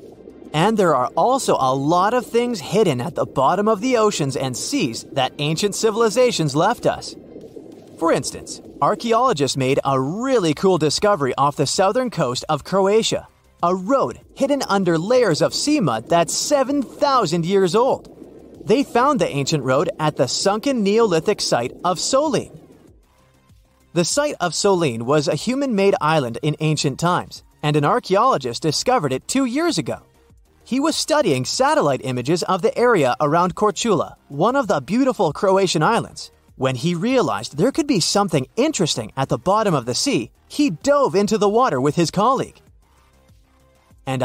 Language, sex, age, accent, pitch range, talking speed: English, male, 30-49, American, 145-235 Hz, 160 wpm